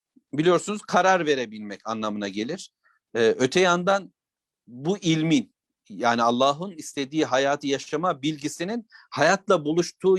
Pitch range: 145-190 Hz